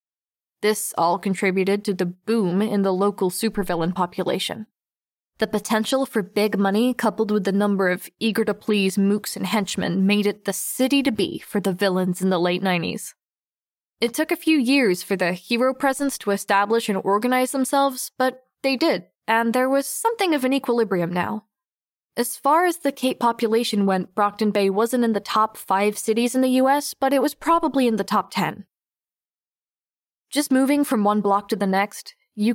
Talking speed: 175 wpm